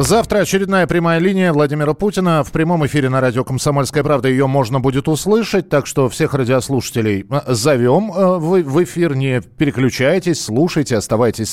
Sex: male